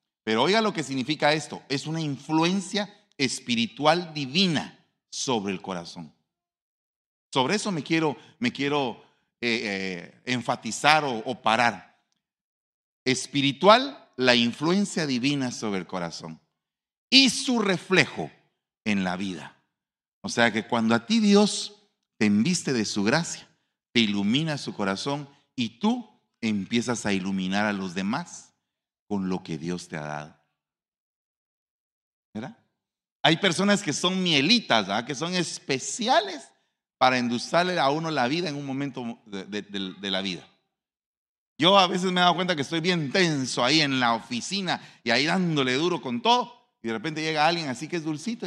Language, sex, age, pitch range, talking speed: Spanish, male, 40-59, 115-190 Hz, 150 wpm